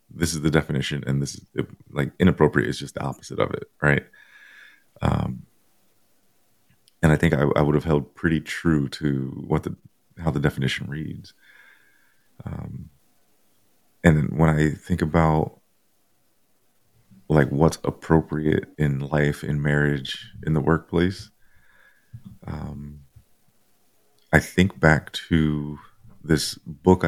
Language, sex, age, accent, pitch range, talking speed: English, male, 30-49, American, 70-80 Hz, 125 wpm